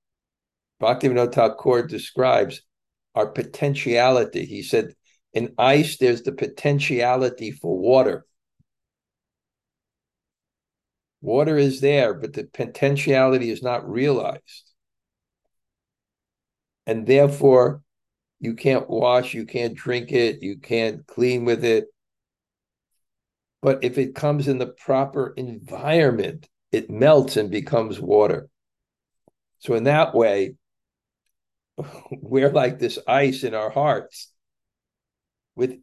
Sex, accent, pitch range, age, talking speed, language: male, American, 115-140 Hz, 50-69, 105 wpm, English